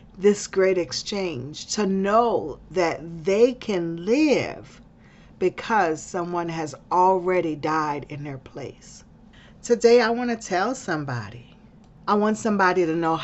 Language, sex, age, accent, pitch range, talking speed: English, female, 40-59, American, 155-205 Hz, 125 wpm